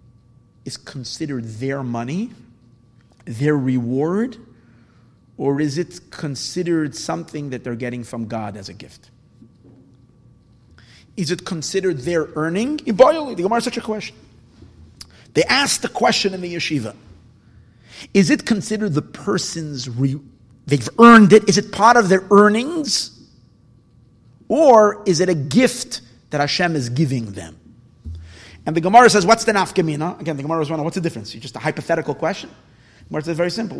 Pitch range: 125-195 Hz